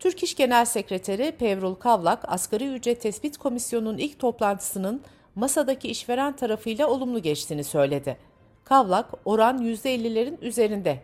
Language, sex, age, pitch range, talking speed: Turkish, female, 60-79, 185-255 Hz, 120 wpm